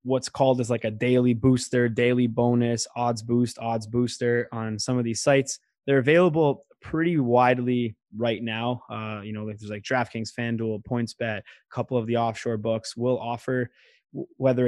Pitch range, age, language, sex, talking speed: 115-130 Hz, 20-39, English, male, 175 wpm